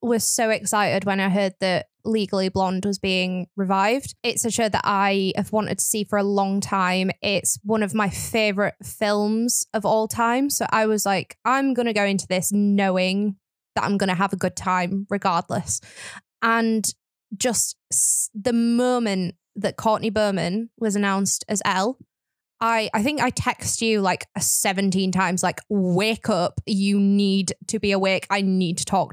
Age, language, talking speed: 10-29, English, 175 wpm